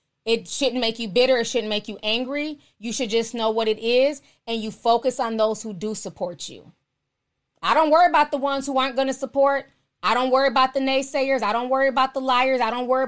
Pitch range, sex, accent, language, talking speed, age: 225-270 Hz, female, American, English, 240 wpm, 20-39